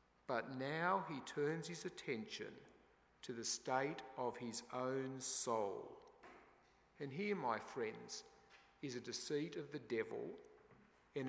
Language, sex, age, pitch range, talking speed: English, male, 50-69, 130-200 Hz, 130 wpm